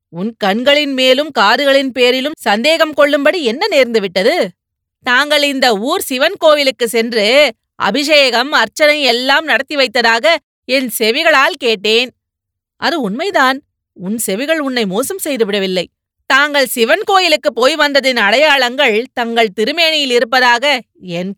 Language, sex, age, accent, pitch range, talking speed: Tamil, female, 30-49, native, 225-295 Hz, 110 wpm